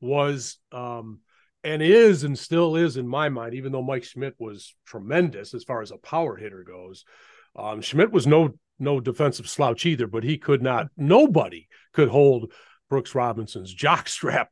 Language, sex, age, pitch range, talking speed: English, male, 40-59, 135-195 Hz, 170 wpm